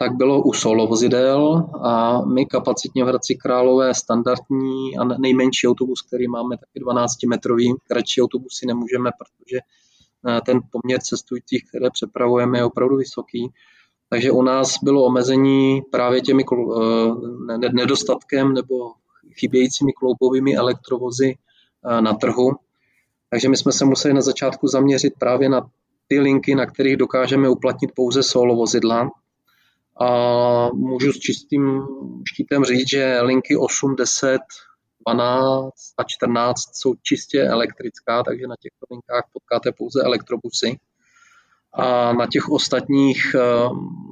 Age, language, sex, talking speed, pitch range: 20-39, Czech, male, 120 wpm, 120-130 Hz